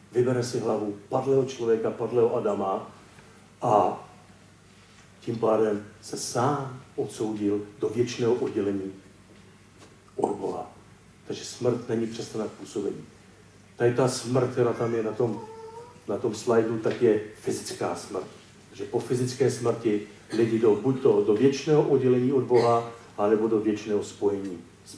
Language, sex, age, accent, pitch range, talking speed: Czech, male, 50-69, native, 105-170 Hz, 130 wpm